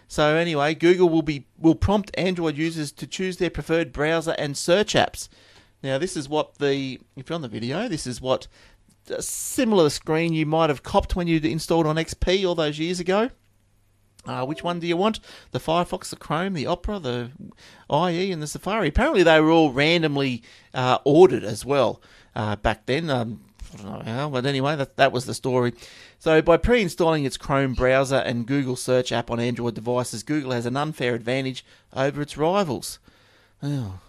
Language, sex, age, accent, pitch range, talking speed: English, male, 30-49, Australian, 115-160 Hz, 195 wpm